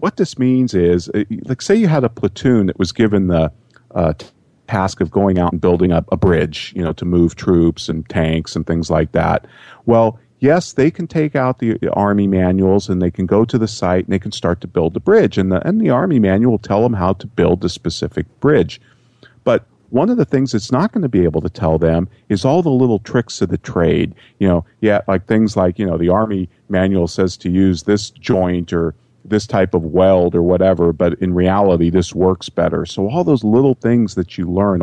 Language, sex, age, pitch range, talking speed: English, male, 40-59, 90-120 Hz, 235 wpm